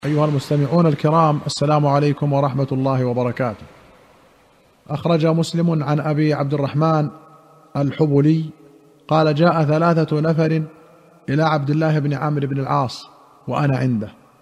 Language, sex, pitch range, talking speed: Arabic, male, 145-165 Hz, 115 wpm